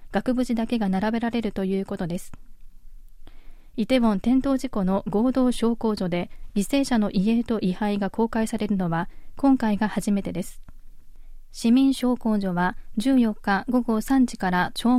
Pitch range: 195-240 Hz